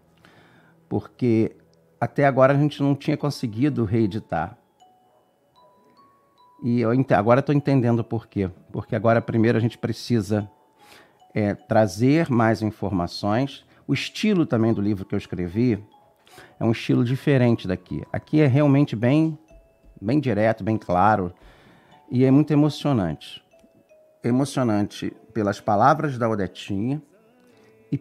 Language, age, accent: Portuguese, 50-69, Brazilian